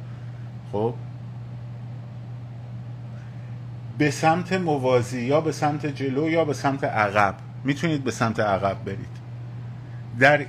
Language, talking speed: Persian, 105 wpm